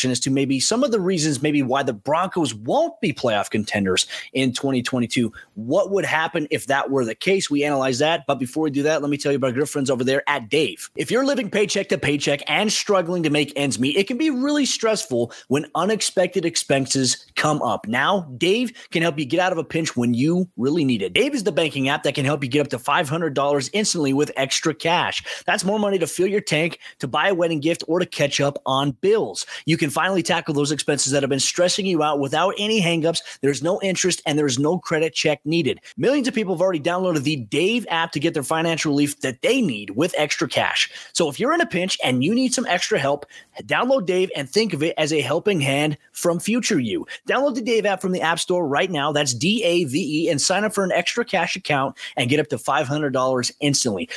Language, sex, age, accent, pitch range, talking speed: English, male, 30-49, American, 145-190 Hz, 235 wpm